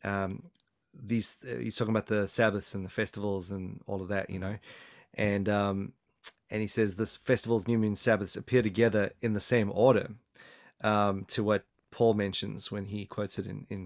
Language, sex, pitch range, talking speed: English, male, 105-125 Hz, 190 wpm